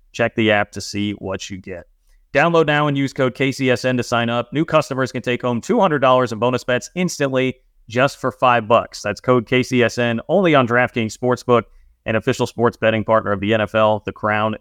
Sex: male